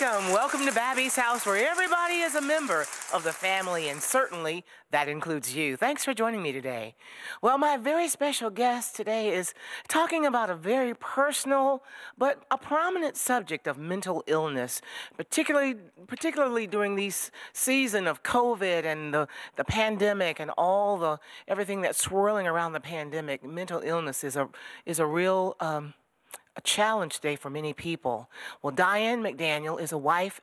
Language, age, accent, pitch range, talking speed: English, 40-59, American, 155-245 Hz, 160 wpm